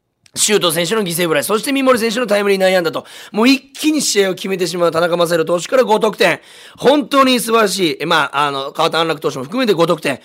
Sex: male